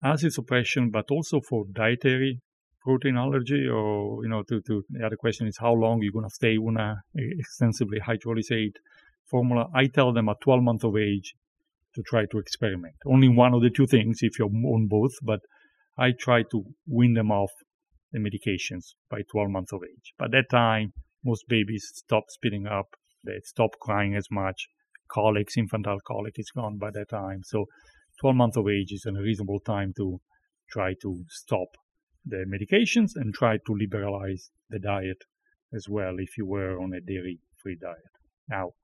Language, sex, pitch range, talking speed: English, male, 100-125 Hz, 180 wpm